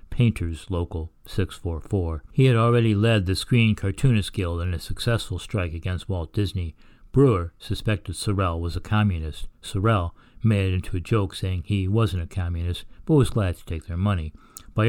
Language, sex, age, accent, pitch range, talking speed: English, male, 60-79, American, 85-110 Hz, 175 wpm